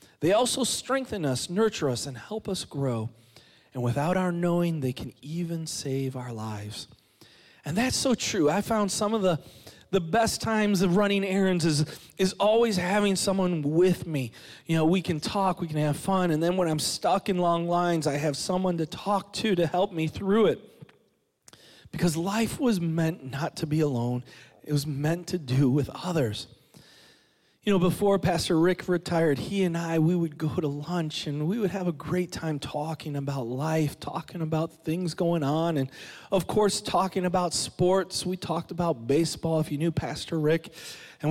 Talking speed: 190 wpm